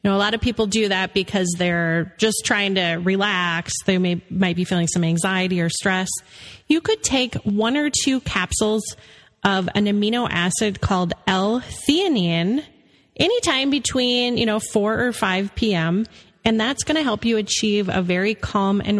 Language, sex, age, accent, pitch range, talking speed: English, female, 30-49, American, 190-240 Hz, 175 wpm